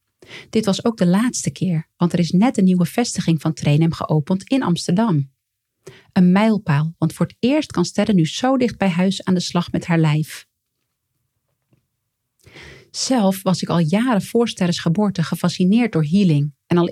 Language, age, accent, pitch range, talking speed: Dutch, 40-59, Dutch, 155-195 Hz, 175 wpm